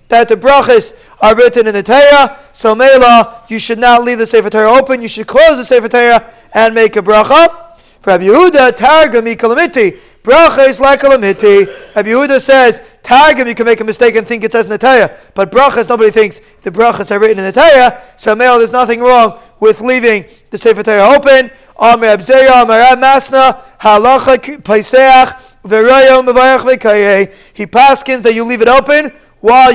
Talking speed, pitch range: 180 wpm, 220-265 Hz